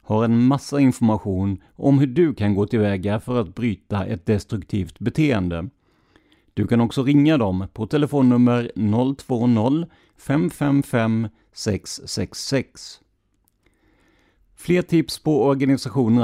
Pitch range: 105-140 Hz